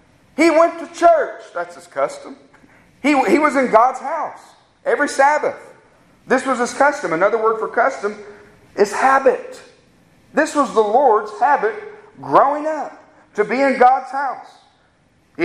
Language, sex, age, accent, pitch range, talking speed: English, male, 40-59, American, 210-295 Hz, 150 wpm